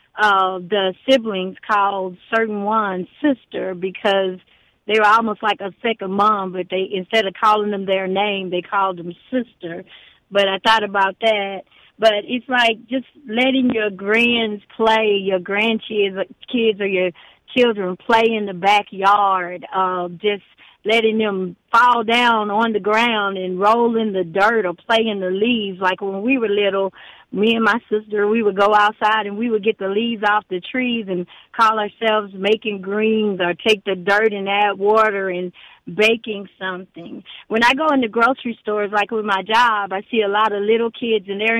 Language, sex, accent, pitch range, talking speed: English, female, American, 195-225 Hz, 180 wpm